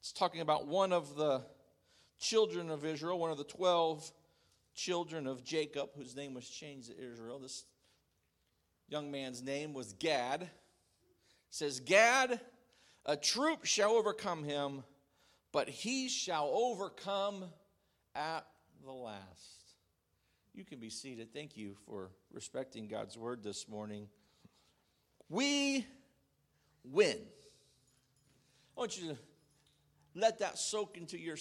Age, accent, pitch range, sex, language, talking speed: 50-69, American, 145-220 Hz, male, English, 125 wpm